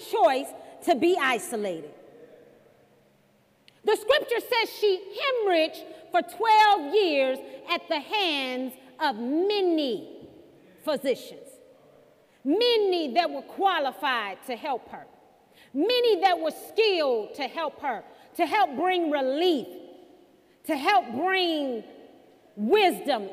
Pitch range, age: 330-445 Hz, 40-59